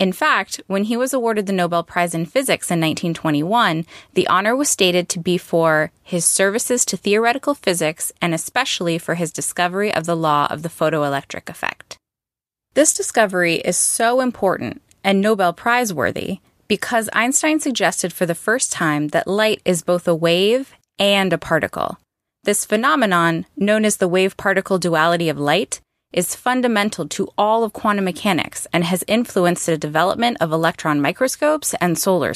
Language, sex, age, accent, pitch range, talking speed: English, female, 20-39, American, 165-225 Hz, 160 wpm